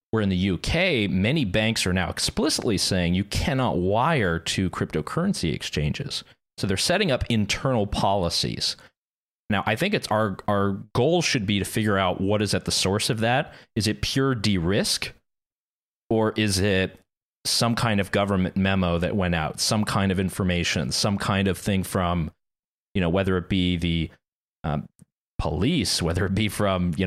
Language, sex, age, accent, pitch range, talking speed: English, male, 30-49, American, 90-110 Hz, 175 wpm